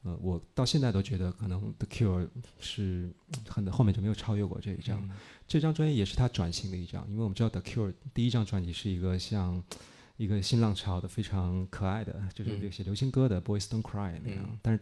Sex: male